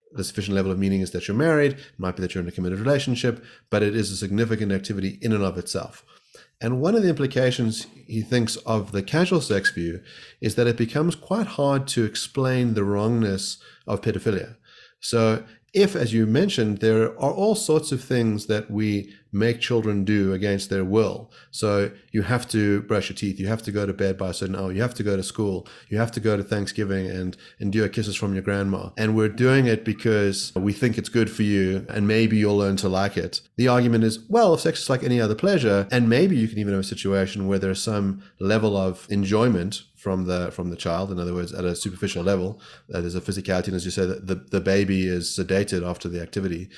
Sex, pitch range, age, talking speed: male, 95-115 Hz, 30-49, 225 wpm